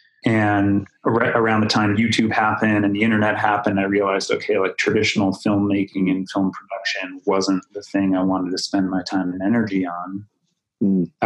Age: 30-49